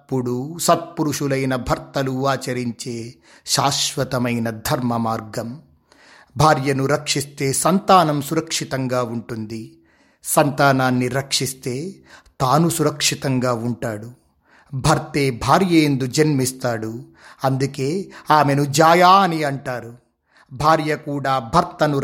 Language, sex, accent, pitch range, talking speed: Telugu, male, native, 130-160 Hz, 70 wpm